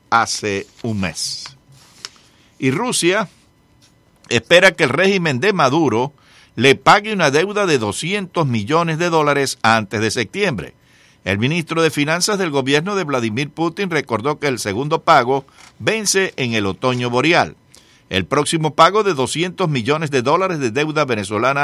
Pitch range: 120-160 Hz